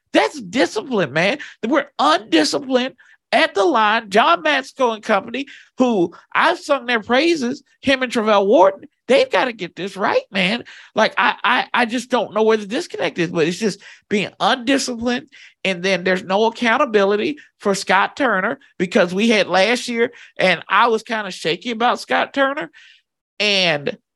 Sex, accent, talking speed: male, American, 165 wpm